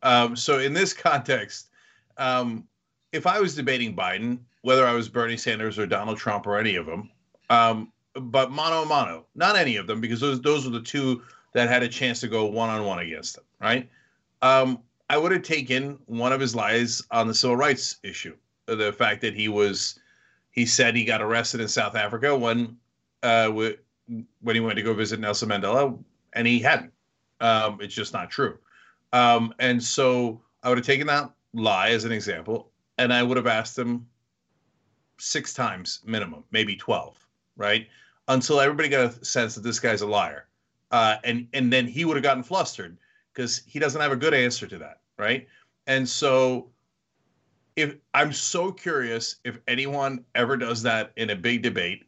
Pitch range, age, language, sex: 115-135 Hz, 40-59, English, male